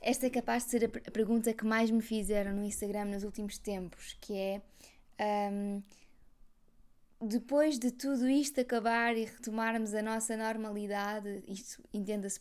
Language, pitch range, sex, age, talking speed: Portuguese, 200-225 Hz, female, 20-39, 140 wpm